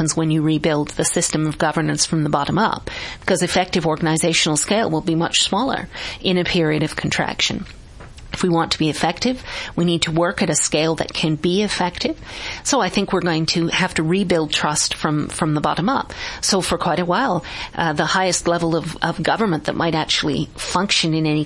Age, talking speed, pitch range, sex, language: 40-59, 205 wpm, 155-190 Hz, female, English